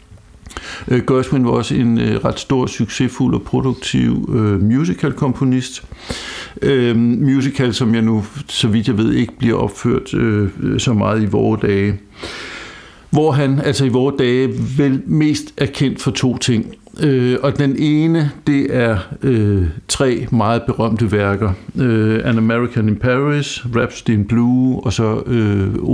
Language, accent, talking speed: Danish, native, 150 wpm